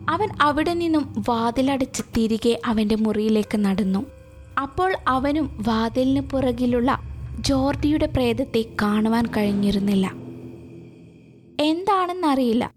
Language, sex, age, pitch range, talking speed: Malayalam, female, 20-39, 225-310 Hz, 80 wpm